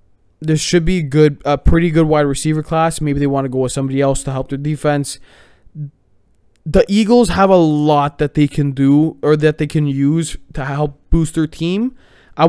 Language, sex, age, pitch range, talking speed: English, male, 20-39, 130-160 Hz, 200 wpm